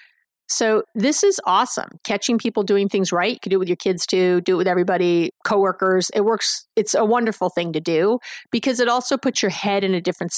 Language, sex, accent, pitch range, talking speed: English, female, American, 190-235 Hz, 225 wpm